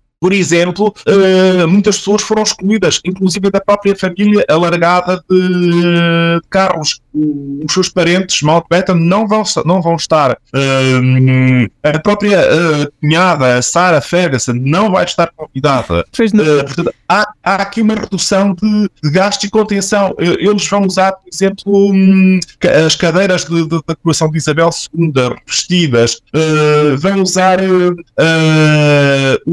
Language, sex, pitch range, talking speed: Portuguese, male, 155-195 Hz, 145 wpm